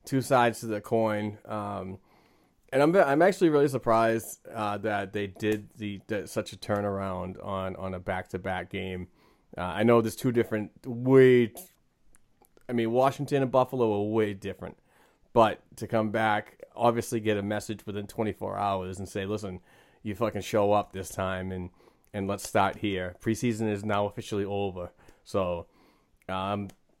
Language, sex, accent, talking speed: English, male, American, 165 wpm